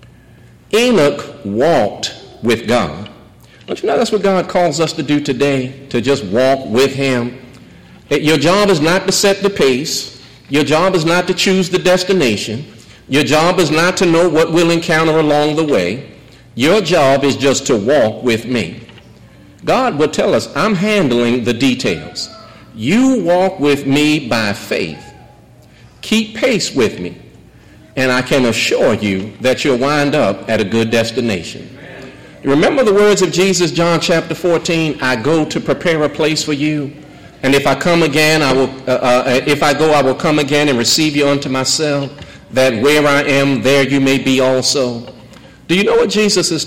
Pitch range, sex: 130-170 Hz, male